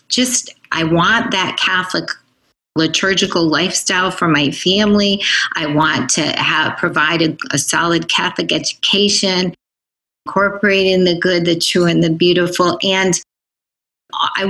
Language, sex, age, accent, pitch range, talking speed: English, female, 30-49, American, 165-210 Hz, 120 wpm